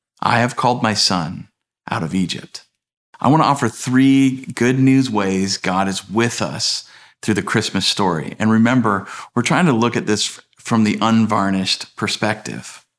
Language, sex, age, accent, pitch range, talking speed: English, male, 40-59, American, 95-120 Hz, 165 wpm